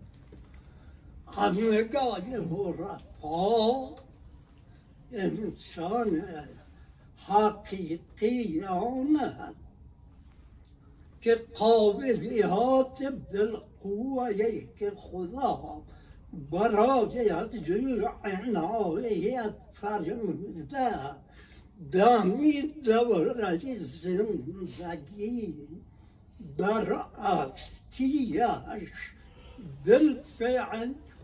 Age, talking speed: 60-79, 35 wpm